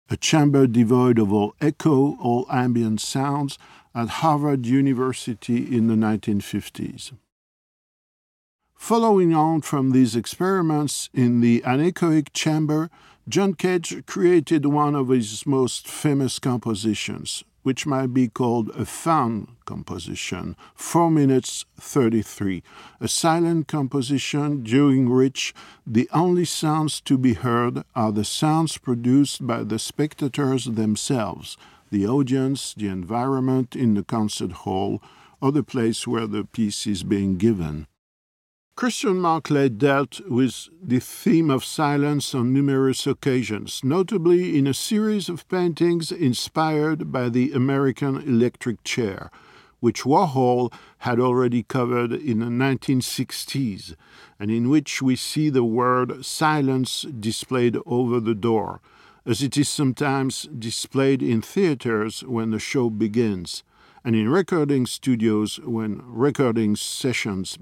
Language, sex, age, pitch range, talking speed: French, male, 50-69, 115-145 Hz, 125 wpm